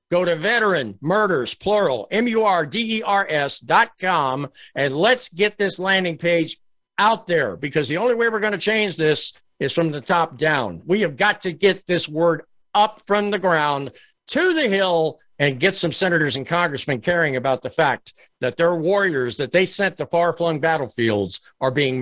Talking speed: 165 wpm